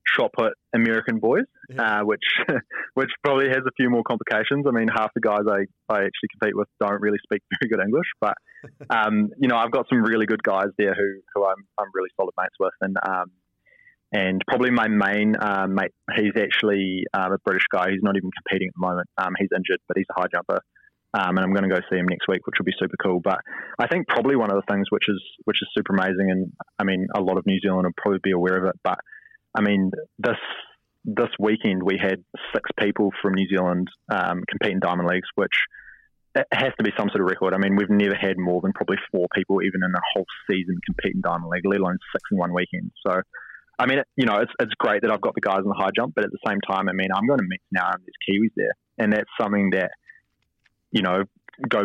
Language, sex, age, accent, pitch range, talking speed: English, male, 20-39, Australian, 95-105 Hz, 245 wpm